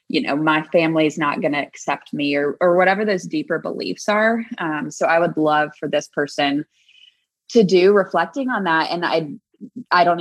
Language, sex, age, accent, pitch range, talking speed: English, female, 20-39, American, 155-200 Hz, 200 wpm